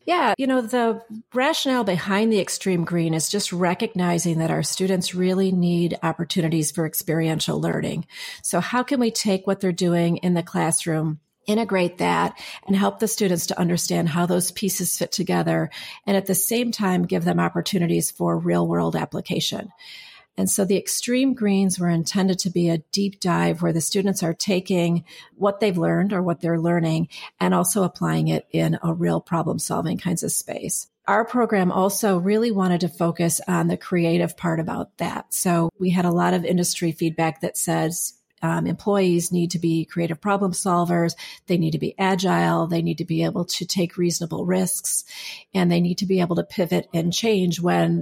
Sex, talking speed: female, 185 wpm